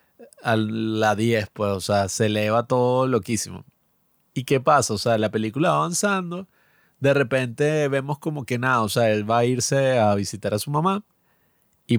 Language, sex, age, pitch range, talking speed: Spanish, male, 30-49, 115-155 Hz, 185 wpm